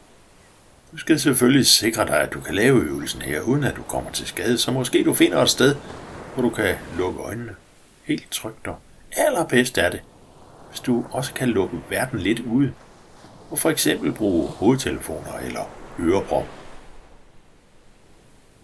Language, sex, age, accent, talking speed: Danish, male, 60-79, native, 155 wpm